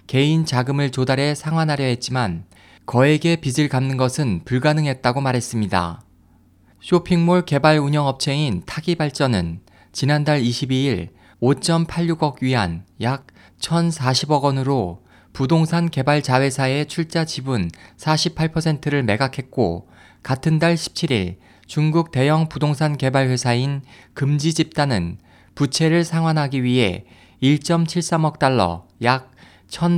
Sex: male